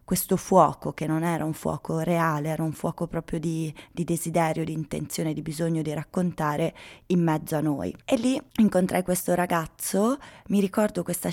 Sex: female